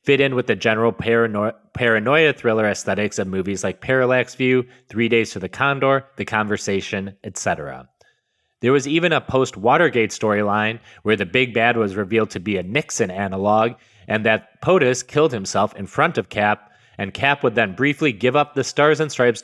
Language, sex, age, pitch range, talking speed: English, male, 30-49, 105-135 Hz, 180 wpm